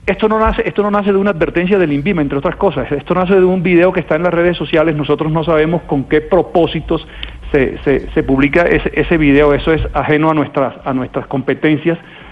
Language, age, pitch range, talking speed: Spanish, 40-59, 140-170 Hz, 225 wpm